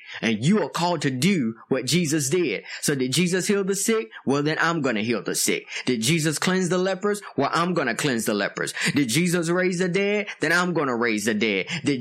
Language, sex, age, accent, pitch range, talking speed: English, male, 20-39, American, 150-200 Hz, 240 wpm